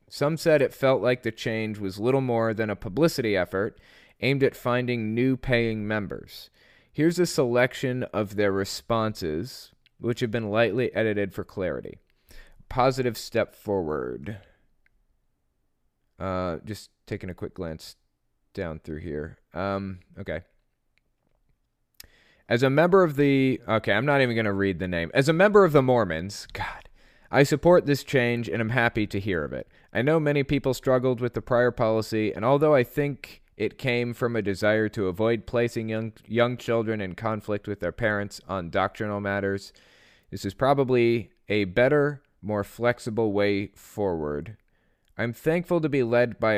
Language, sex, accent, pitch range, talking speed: English, male, American, 100-130 Hz, 160 wpm